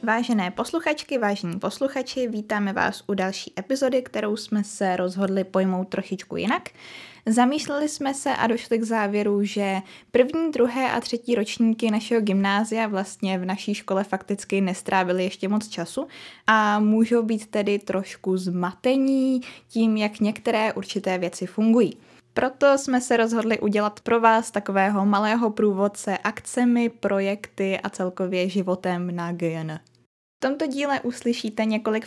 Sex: female